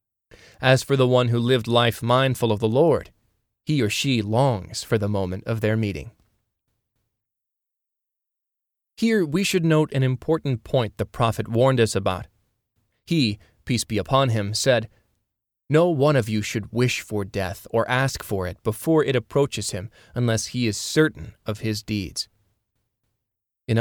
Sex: male